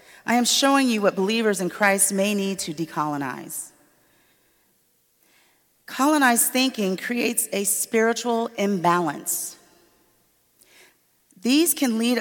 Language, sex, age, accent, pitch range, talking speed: English, female, 40-59, American, 190-235 Hz, 105 wpm